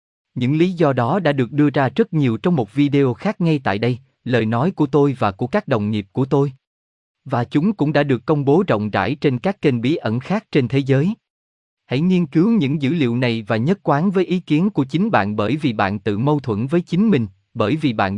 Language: Vietnamese